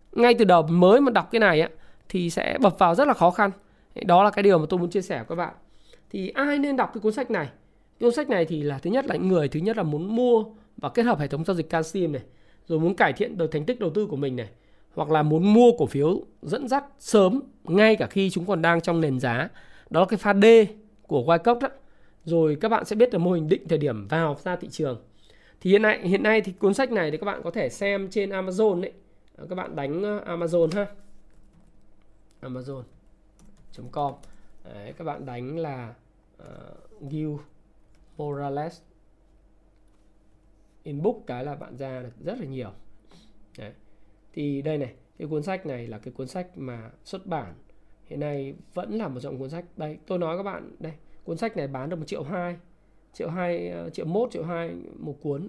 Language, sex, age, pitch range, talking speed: Vietnamese, male, 20-39, 140-205 Hz, 215 wpm